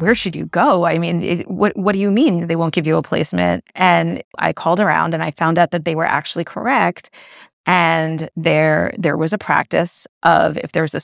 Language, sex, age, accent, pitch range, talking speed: English, female, 30-49, American, 160-185 Hz, 230 wpm